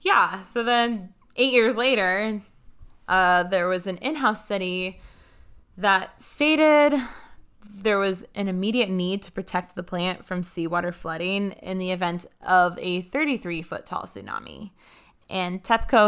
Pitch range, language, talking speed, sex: 180-220 Hz, English, 130 wpm, female